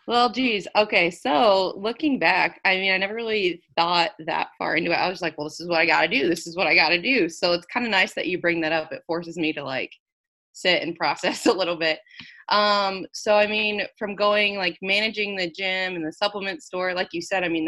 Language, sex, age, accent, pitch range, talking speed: English, female, 20-39, American, 170-200 Hz, 250 wpm